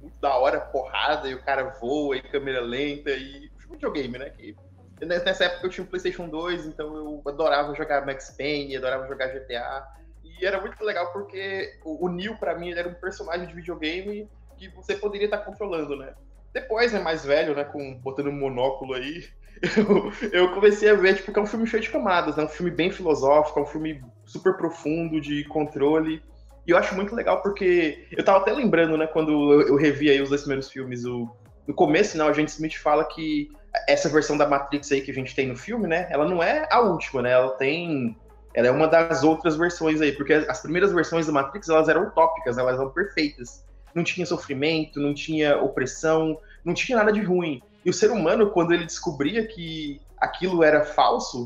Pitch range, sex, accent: 145-185 Hz, male, Brazilian